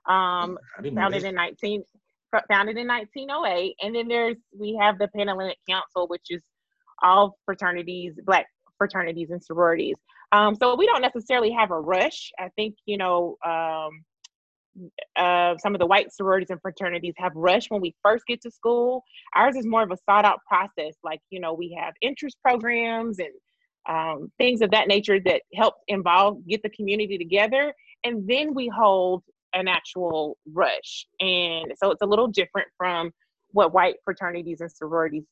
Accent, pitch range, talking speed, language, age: American, 180-225 Hz, 170 wpm, English, 20-39